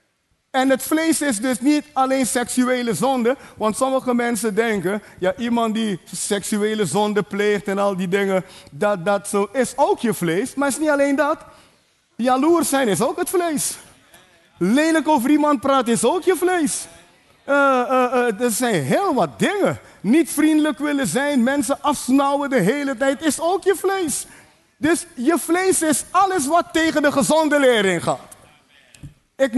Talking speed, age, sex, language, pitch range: 170 wpm, 30-49, male, Dutch, 220-300 Hz